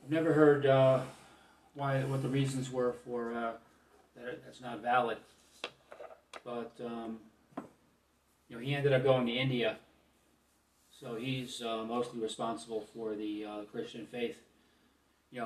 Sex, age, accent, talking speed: male, 40-59, American, 145 wpm